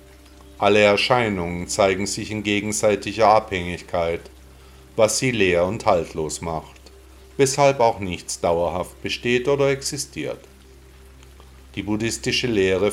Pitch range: 75-110 Hz